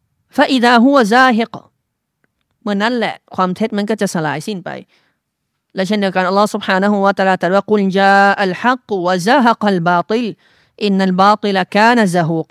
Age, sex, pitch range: 30-49, female, 170-215 Hz